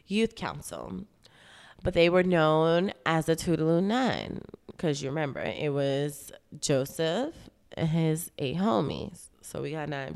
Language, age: English, 20-39